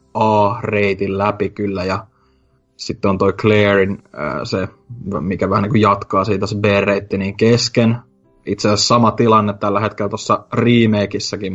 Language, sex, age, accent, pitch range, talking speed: Finnish, male, 20-39, native, 100-110 Hz, 145 wpm